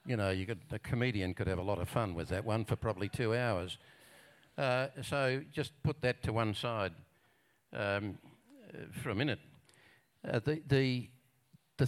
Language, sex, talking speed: English, male, 175 wpm